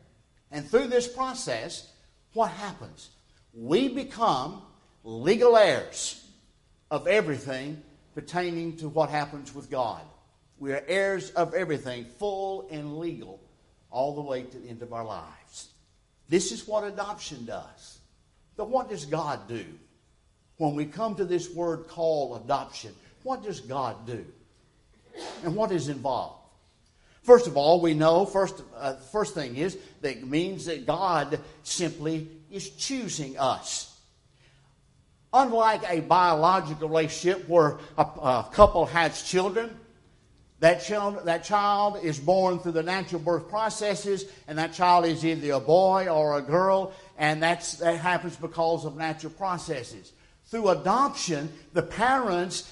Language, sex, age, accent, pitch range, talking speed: English, male, 60-79, American, 145-195 Hz, 140 wpm